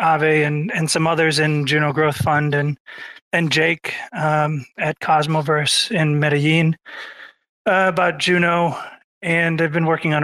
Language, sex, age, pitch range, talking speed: English, male, 30-49, 145-165 Hz, 145 wpm